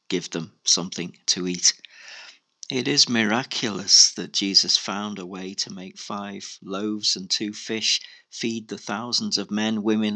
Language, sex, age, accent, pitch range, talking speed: English, male, 50-69, British, 100-115 Hz, 155 wpm